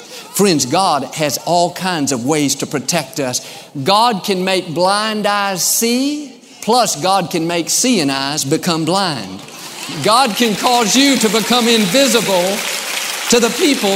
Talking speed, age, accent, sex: 145 wpm, 50-69, American, male